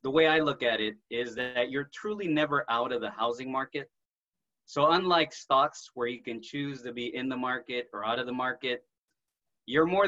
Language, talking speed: English, 210 wpm